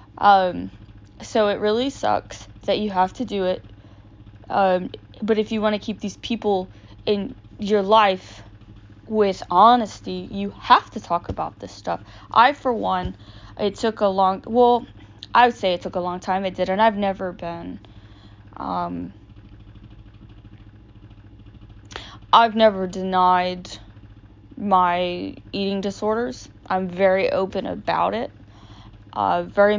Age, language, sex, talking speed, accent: 20-39, English, female, 135 wpm, American